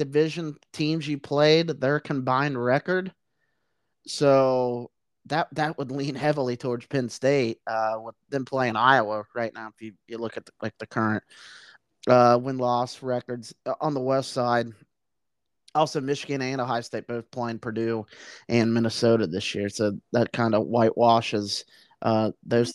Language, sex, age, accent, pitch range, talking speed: English, male, 30-49, American, 115-150 Hz, 155 wpm